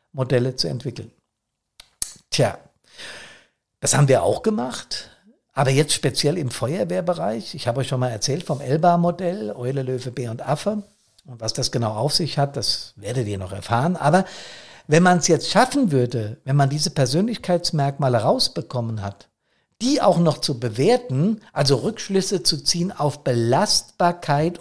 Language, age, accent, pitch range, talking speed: German, 50-69, German, 130-185 Hz, 155 wpm